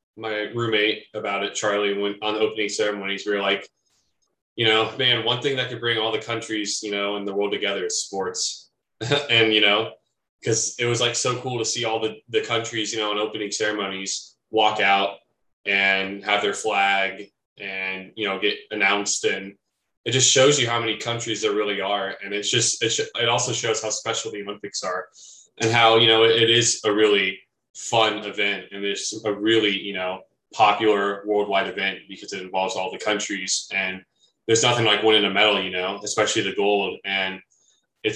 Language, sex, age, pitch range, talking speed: English, male, 20-39, 100-115 Hz, 200 wpm